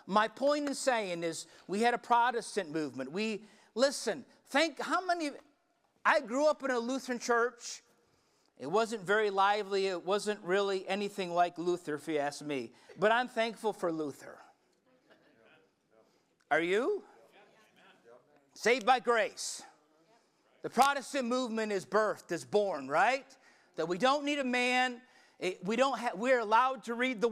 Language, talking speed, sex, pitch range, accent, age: English, 150 wpm, male, 210-260 Hz, American, 50-69